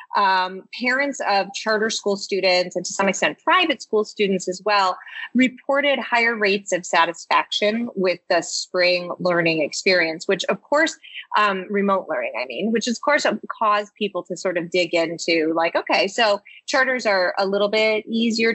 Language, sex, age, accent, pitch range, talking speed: English, female, 30-49, American, 185-240 Hz, 170 wpm